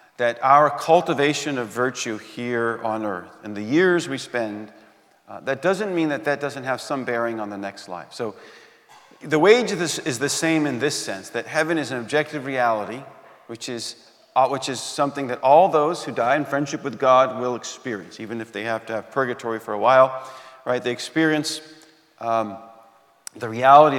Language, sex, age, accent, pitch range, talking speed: English, male, 40-59, American, 115-145 Hz, 185 wpm